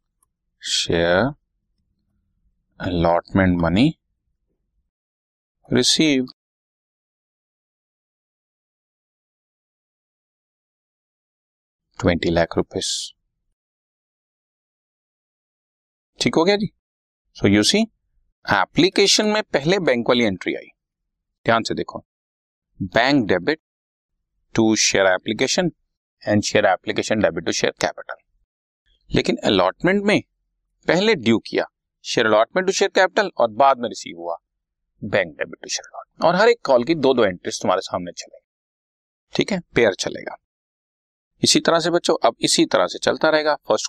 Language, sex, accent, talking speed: Hindi, male, native, 110 wpm